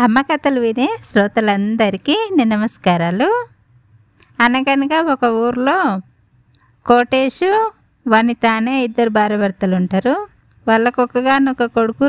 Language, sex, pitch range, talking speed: Telugu, female, 200-255 Hz, 90 wpm